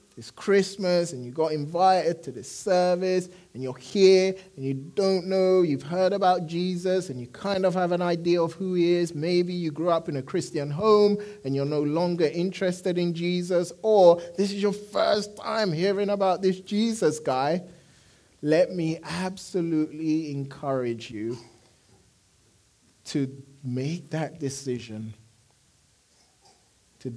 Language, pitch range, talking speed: English, 120-175 Hz, 150 wpm